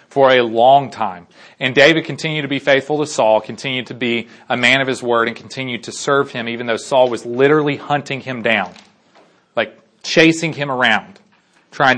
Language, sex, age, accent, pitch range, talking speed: English, male, 30-49, American, 115-150 Hz, 190 wpm